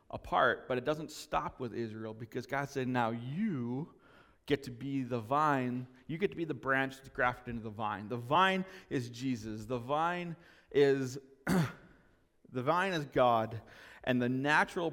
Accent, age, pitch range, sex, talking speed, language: American, 30-49, 120-150 Hz, male, 170 wpm, English